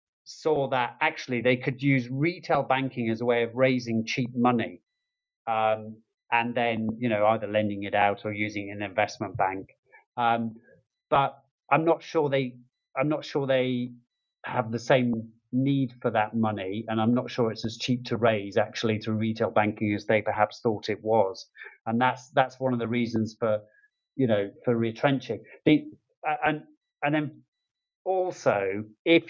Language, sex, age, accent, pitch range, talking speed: English, male, 30-49, British, 110-135 Hz, 170 wpm